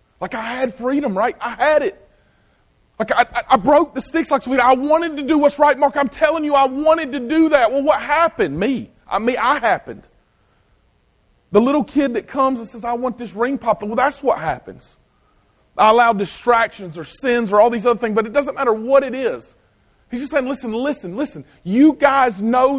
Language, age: English, 40-59